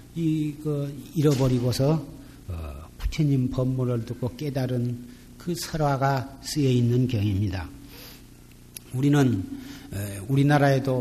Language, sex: Korean, male